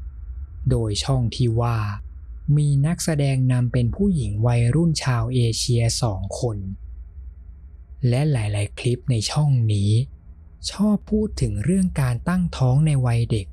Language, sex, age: Thai, male, 20-39